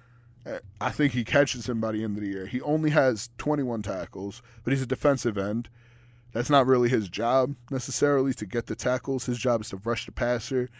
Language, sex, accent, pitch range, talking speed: English, male, American, 115-135 Hz, 210 wpm